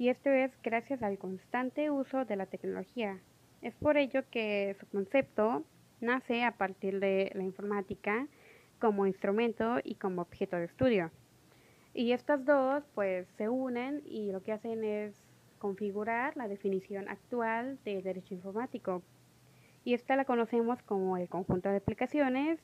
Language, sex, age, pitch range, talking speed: Spanish, female, 20-39, 195-235 Hz, 150 wpm